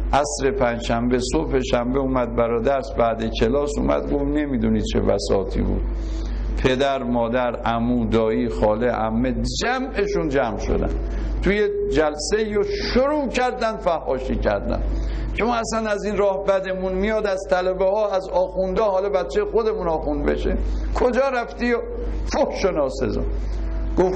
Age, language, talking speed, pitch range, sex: 60-79, Persian, 130 wpm, 120-195 Hz, male